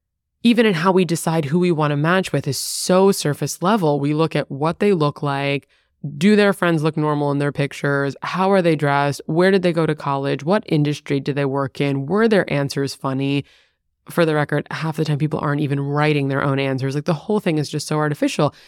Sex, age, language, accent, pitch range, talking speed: female, 20-39, English, American, 145-180 Hz, 230 wpm